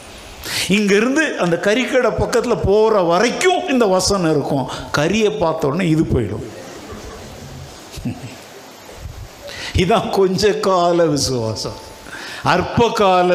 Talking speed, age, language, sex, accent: 60 wpm, 60-79, Tamil, male, native